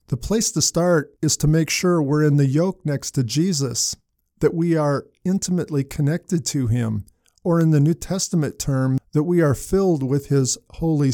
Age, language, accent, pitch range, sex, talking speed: 50-69, English, American, 135-170 Hz, male, 190 wpm